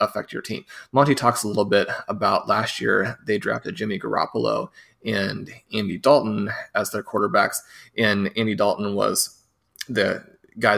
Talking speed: 150 wpm